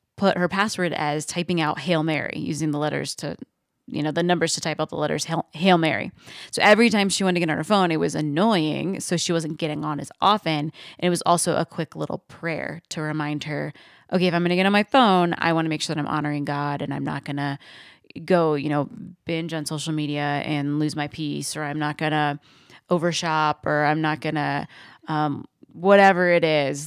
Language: English